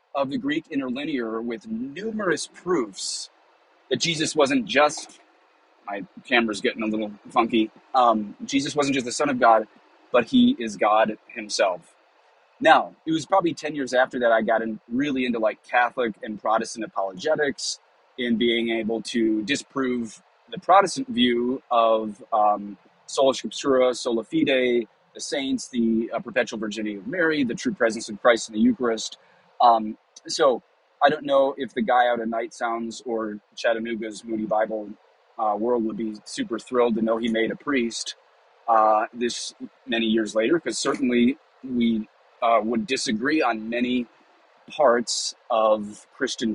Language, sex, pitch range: English, male, 110-135 Hz